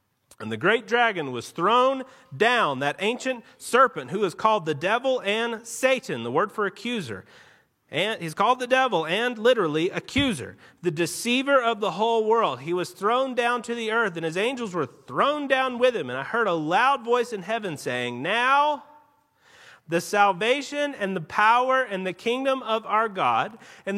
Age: 40-59